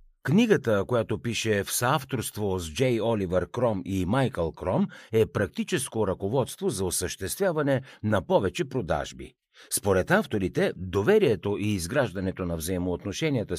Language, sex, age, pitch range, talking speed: Bulgarian, male, 60-79, 90-135 Hz, 120 wpm